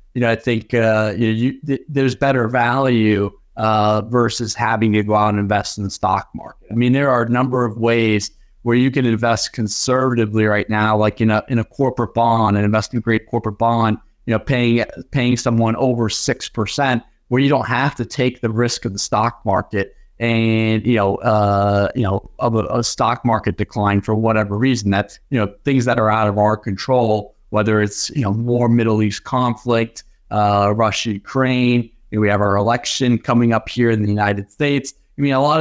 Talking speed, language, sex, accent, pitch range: 210 wpm, English, male, American, 105-120 Hz